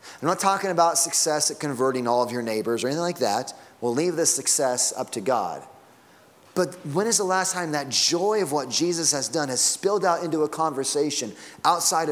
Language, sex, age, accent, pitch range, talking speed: English, male, 30-49, American, 130-160 Hz, 210 wpm